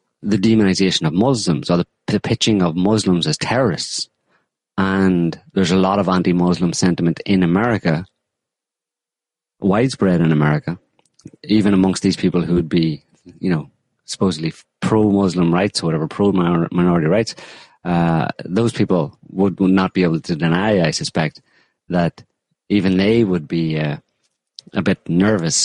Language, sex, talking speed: English, male, 145 wpm